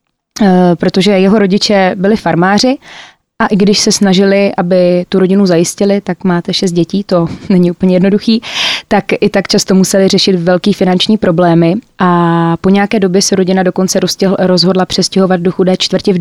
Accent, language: native, Czech